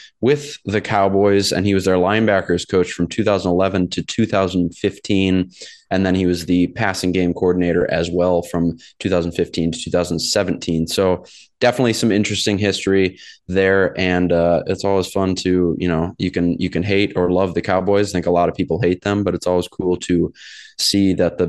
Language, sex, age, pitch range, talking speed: English, male, 20-39, 90-105 Hz, 185 wpm